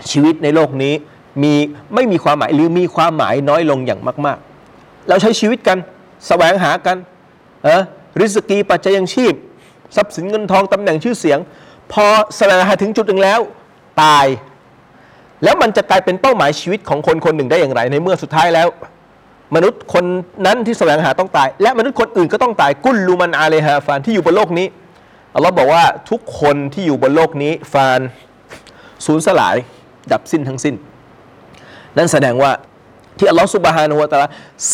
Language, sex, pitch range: Thai, male, 145-195 Hz